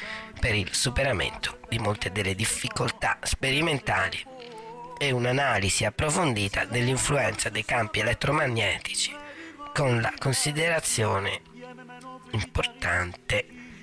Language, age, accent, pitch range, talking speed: Italian, 40-59, native, 100-145 Hz, 80 wpm